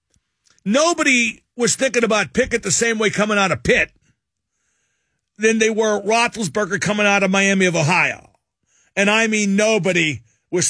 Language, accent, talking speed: English, American, 150 wpm